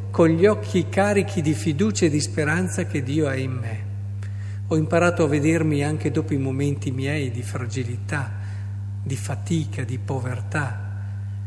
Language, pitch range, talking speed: Italian, 100-140 Hz, 150 wpm